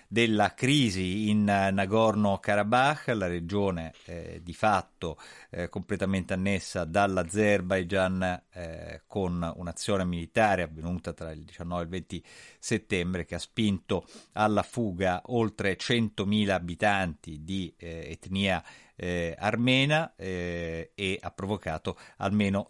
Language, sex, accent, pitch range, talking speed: Italian, male, native, 85-105 Hz, 115 wpm